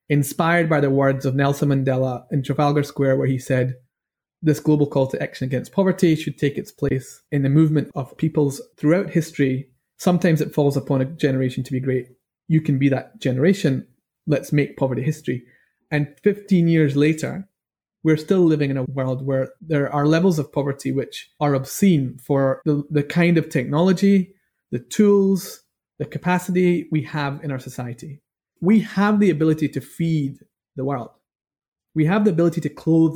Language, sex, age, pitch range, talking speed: English, male, 30-49, 140-170 Hz, 175 wpm